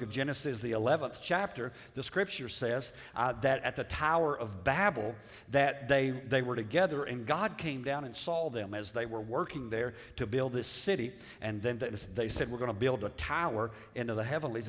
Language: English